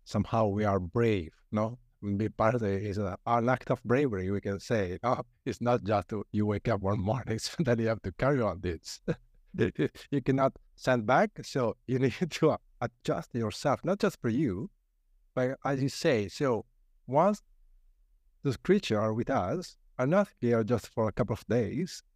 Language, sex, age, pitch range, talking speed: English, male, 50-69, 95-125 Hz, 180 wpm